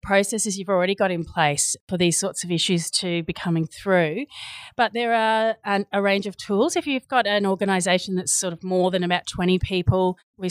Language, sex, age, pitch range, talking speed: English, female, 30-49, 170-200 Hz, 205 wpm